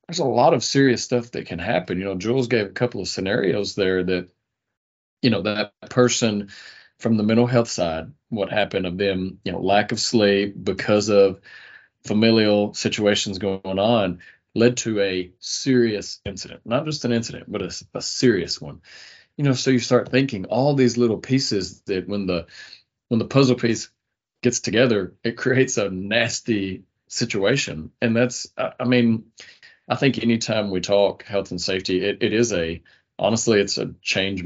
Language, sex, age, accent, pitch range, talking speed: English, male, 40-59, American, 95-115 Hz, 180 wpm